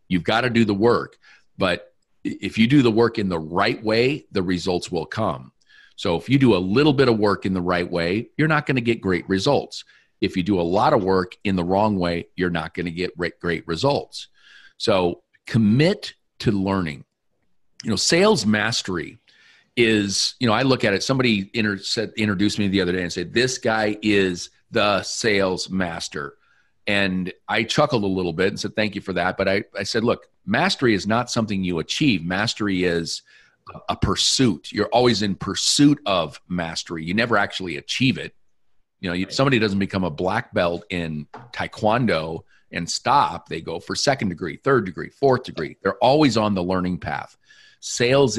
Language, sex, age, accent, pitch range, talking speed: English, male, 40-59, American, 90-115 Hz, 190 wpm